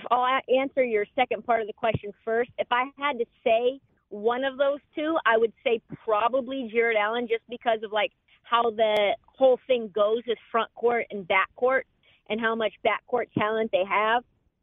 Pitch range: 215-250 Hz